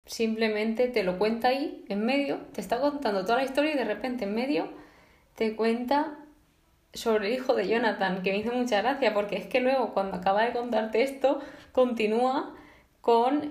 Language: Spanish